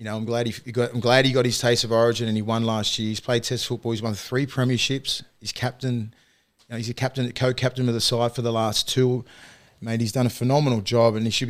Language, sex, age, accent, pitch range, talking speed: English, male, 20-39, Australian, 115-130 Hz, 265 wpm